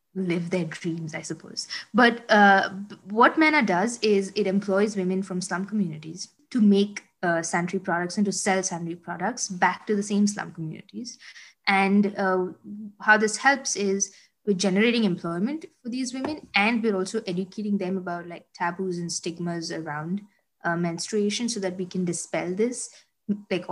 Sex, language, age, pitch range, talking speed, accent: female, English, 20-39, 175-210 Hz, 165 wpm, Indian